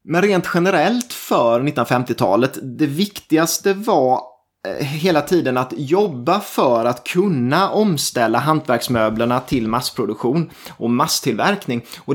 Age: 20-39